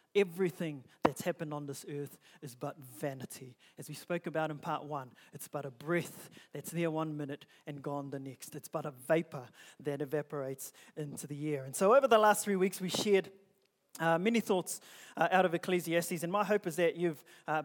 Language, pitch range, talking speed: English, 150-195 Hz, 205 wpm